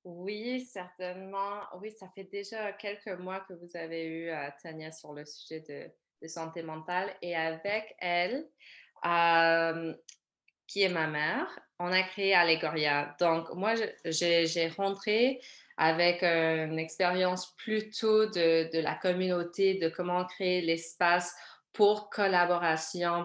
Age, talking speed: 20-39, 130 wpm